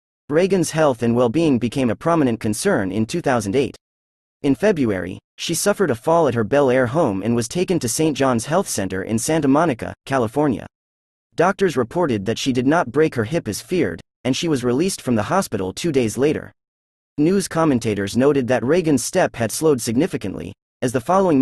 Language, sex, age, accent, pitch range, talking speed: English, male, 30-49, American, 115-160 Hz, 185 wpm